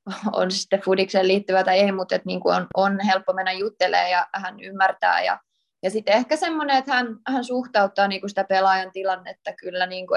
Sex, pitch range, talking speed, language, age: female, 190-220 Hz, 185 wpm, Finnish, 20-39